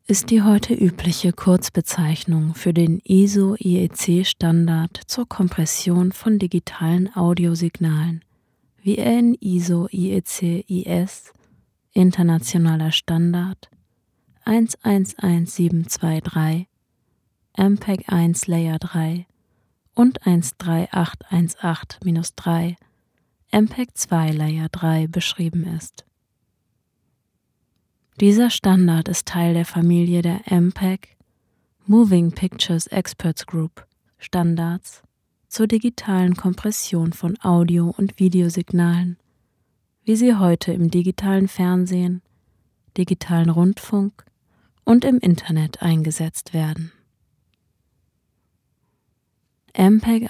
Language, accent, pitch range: German, German, 165-190 Hz